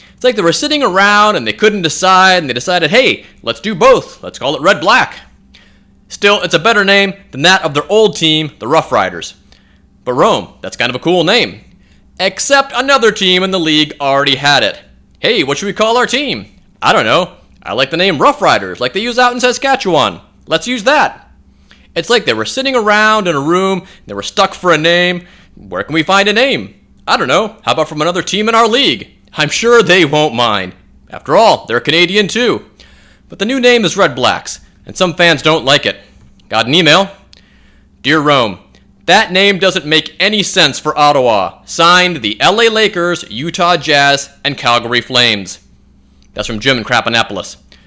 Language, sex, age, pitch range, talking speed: English, male, 30-49, 140-205 Hz, 200 wpm